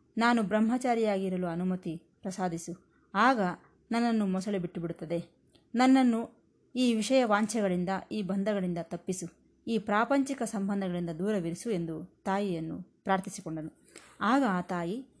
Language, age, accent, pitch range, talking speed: Kannada, 20-39, native, 180-245 Hz, 95 wpm